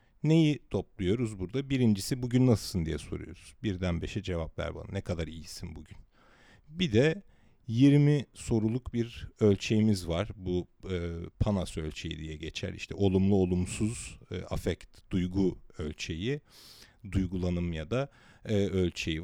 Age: 40-59